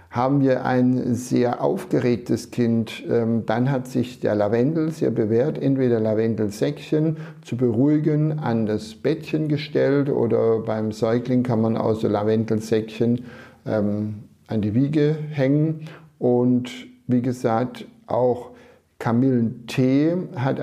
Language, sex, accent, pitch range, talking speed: German, male, German, 115-145 Hz, 110 wpm